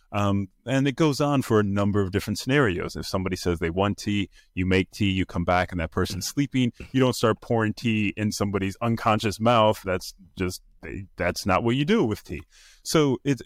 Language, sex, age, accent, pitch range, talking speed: English, male, 30-49, American, 95-125 Hz, 210 wpm